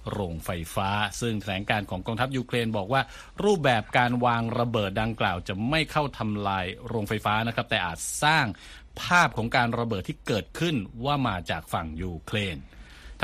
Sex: male